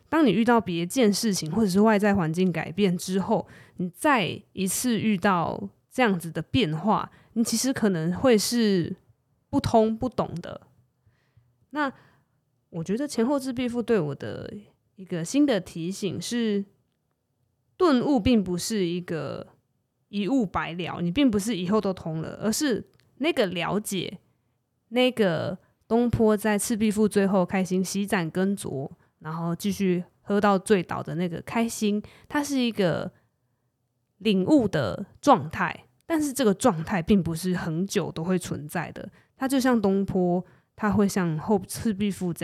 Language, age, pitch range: Chinese, 20-39, 165-225 Hz